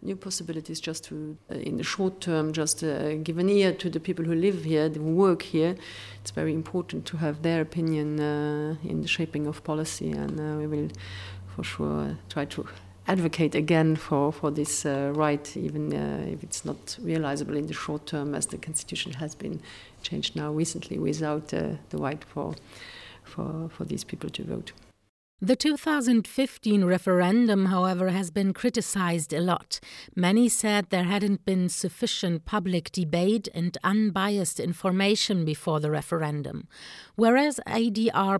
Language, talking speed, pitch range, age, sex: English, 165 wpm, 155-210 Hz, 50-69, female